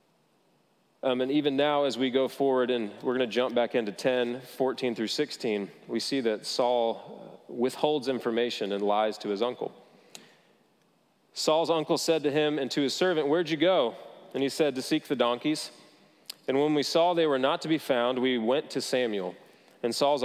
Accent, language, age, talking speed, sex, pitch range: American, English, 30-49, 195 wpm, male, 125-150 Hz